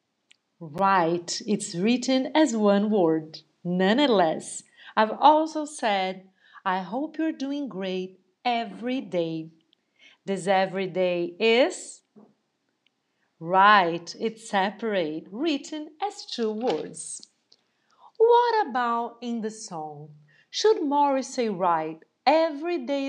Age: 50-69